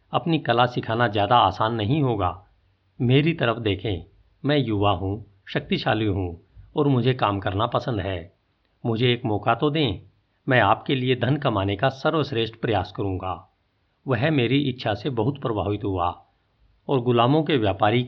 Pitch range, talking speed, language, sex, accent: 100-130 Hz, 155 wpm, Hindi, male, native